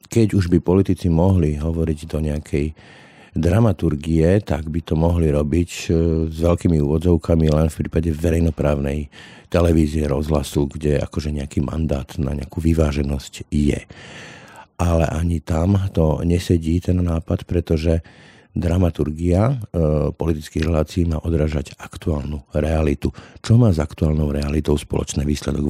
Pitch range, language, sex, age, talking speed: 75-85 Hz, Slovak, male, 50-69, 125 wpm